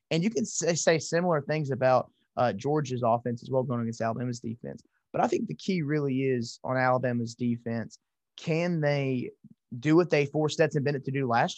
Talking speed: 195 wpm